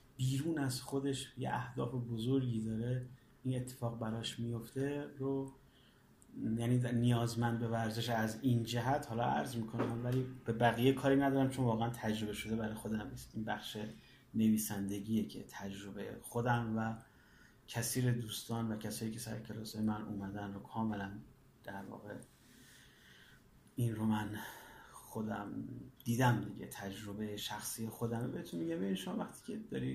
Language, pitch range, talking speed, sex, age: Persian, 110-130 Hz, 140 wpm, male, 30-49